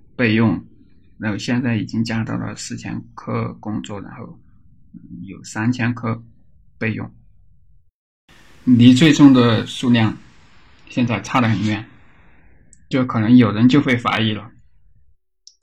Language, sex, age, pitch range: Chinese, male, 20-39, 105-125 Hz